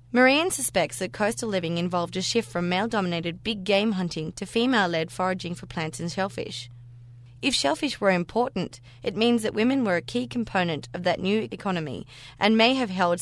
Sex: female